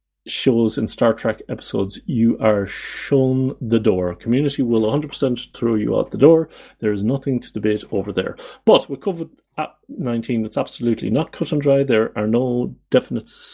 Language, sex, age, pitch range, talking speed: English, male, 30-49, 105-125 Hz, 170 wpm